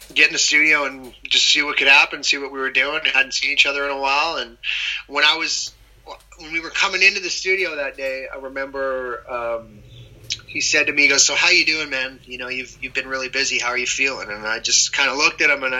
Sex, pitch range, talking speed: male, 130-150 Hz, 260 wpm